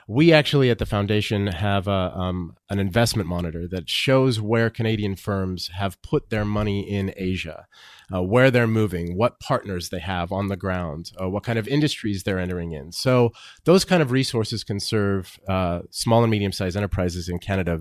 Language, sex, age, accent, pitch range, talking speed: English, male, 30-49, American, 90-110 Hz, 185 wpm